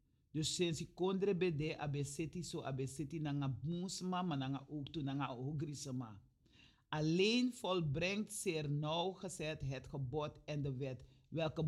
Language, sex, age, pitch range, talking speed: Dutch, male, 40-59, 155-195 Hz, 130 wpm